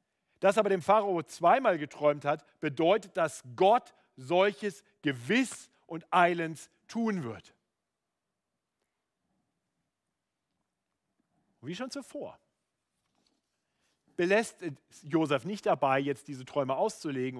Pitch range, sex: 140-205 Hz, male